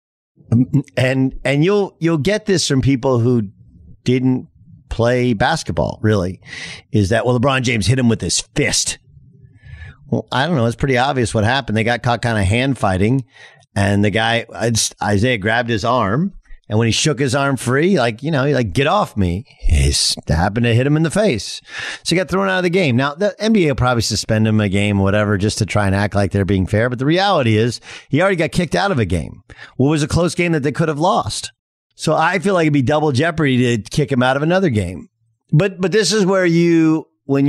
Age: 50-69